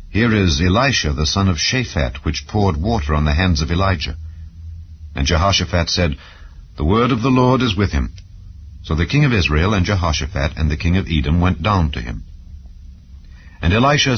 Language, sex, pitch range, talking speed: English, male, 80-110 Hz, 185 wpm